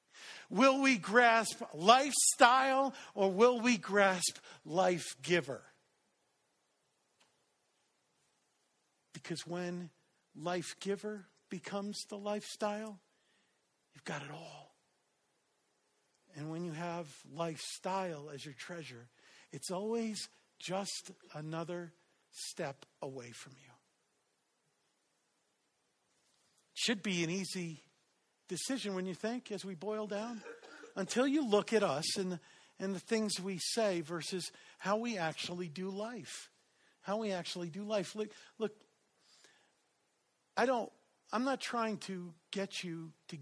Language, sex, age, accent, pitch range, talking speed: English, male, 50-69, American, 175-215 Hz, 115 wpm